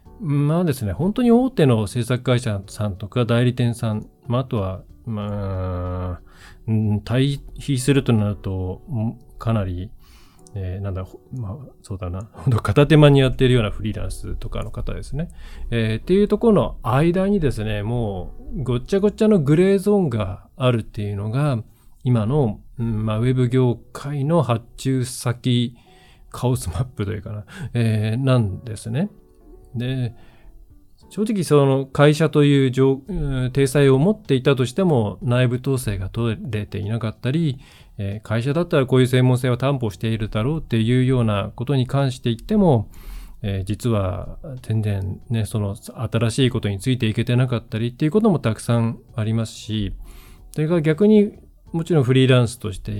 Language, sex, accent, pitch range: Japanese, male, native, 105-135 Hz